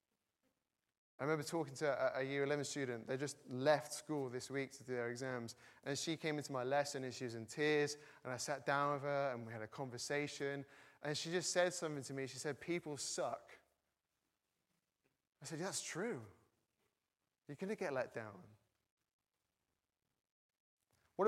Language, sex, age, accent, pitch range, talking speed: English, male, 20-39, British, 120-170 Hz, 175 wpm